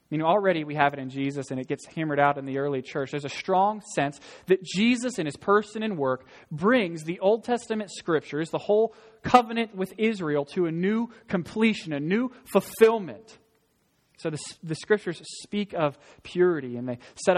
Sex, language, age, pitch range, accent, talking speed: male, English, 20-39, 145-190 Hz, American, 190 wpm